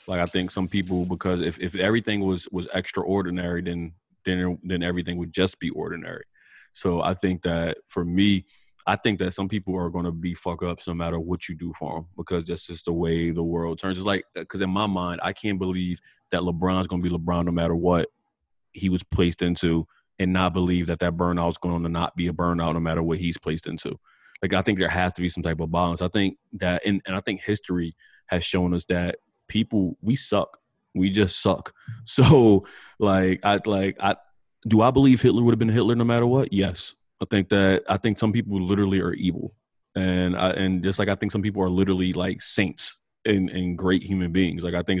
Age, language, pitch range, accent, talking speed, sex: 20-39, English, 90-100 Hz, American, 225 wpm, male